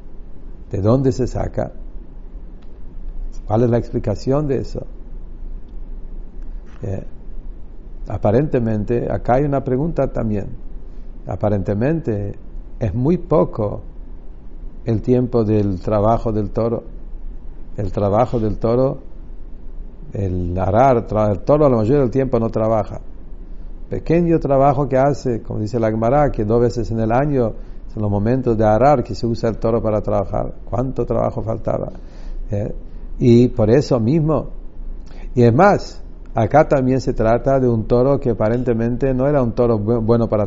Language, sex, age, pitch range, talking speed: English, male, 60-79, 105-125 Hz, 140 wpm